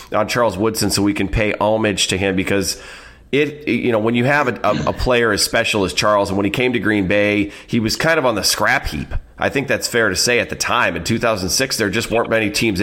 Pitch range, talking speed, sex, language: 100-115 Hz, 260 wpm, male, English